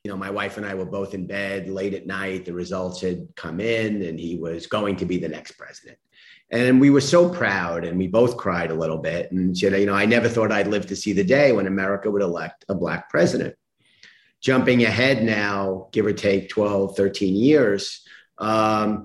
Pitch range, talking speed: 95-115 Hz, 215 wpm